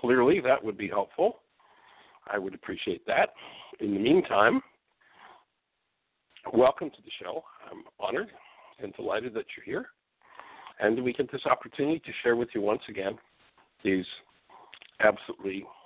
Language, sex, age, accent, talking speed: English, male, 60-79, American, 135 wpm